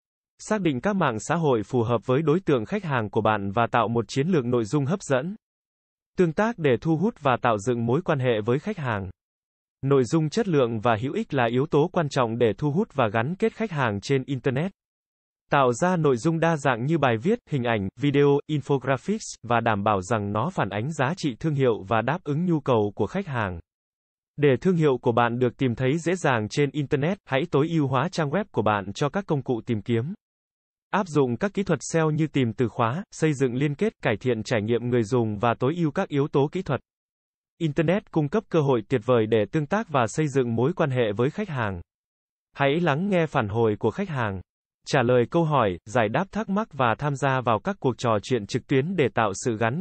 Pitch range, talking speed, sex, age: 120-165 Hz, 235 wpm, male, 20-39